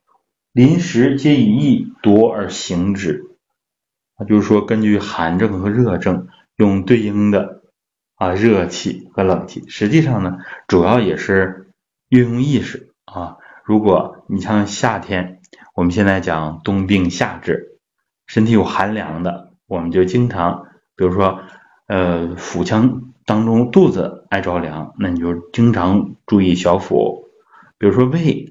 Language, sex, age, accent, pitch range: Chinese, male, 20-39, native, 90-115 Hz